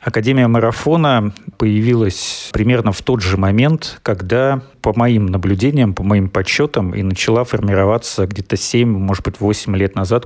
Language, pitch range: Russian, 100-115 Hz